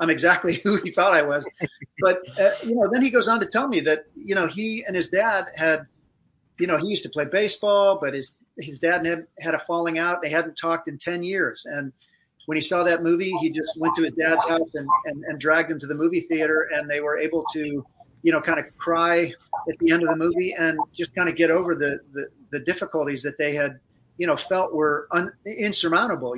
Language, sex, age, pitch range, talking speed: English, male, 40-59, 145-170 Hz, 240 wpm